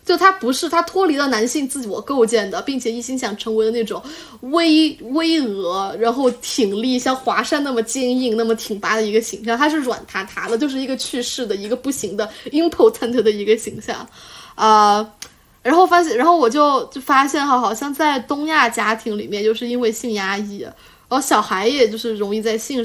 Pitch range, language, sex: 215-270 Hz, Chinese, female